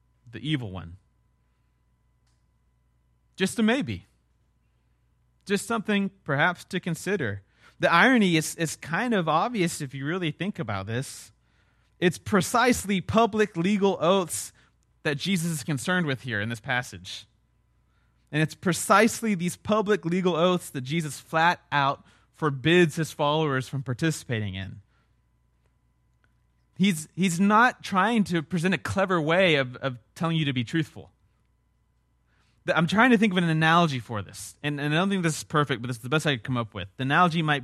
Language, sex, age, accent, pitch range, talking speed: English, male, 30-49, American, 110-170 Hz, 160 wpm